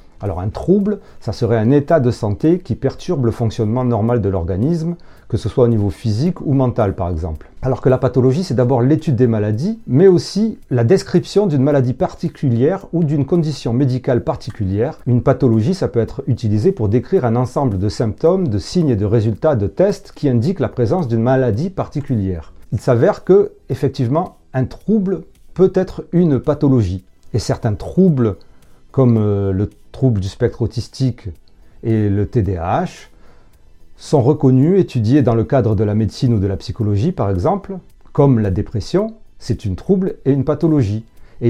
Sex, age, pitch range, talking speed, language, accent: male, 40-59, 110-155 Hz, 175 wpm, French, French